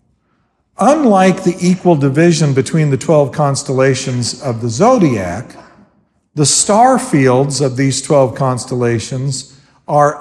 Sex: male